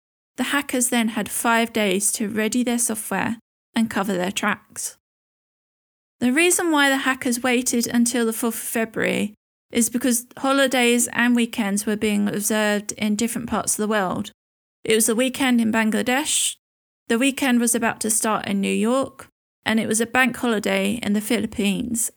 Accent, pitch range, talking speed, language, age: British, 215-245 Hz, 170 wpm, English, 20-39